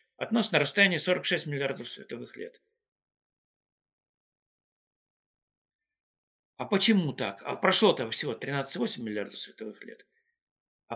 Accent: native